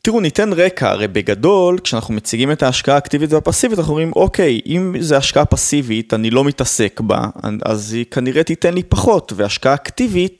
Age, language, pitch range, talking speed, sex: 20-39, Hebrew, 115-160 Hz, 175 wpm, male